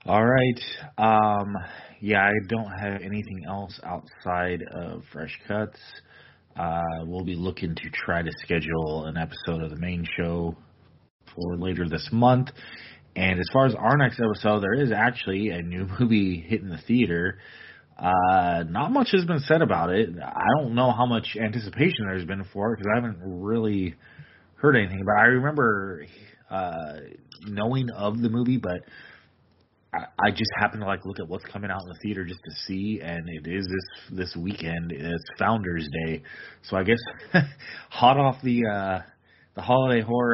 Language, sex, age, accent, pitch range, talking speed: English, male, 30-49, American, 90-115 Hz, 170 wpm